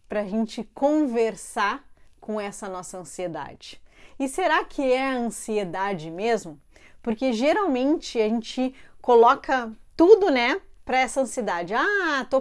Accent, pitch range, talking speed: Brazilian, 215-275 Hz, 120 wpm